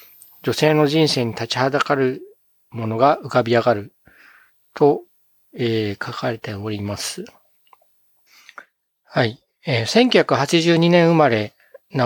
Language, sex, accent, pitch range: Japanese, male, native, 115-165 Hz